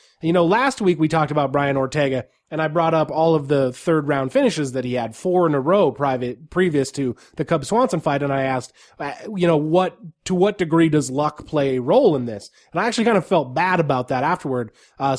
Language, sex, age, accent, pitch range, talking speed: English, male, 20-39, American, 135-175 Hz, 235 wpm